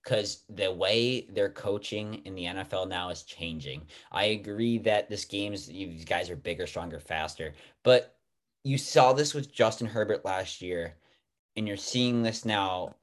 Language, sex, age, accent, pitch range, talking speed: English, male, 30-49, American, 105-135 Hz, 165 wpm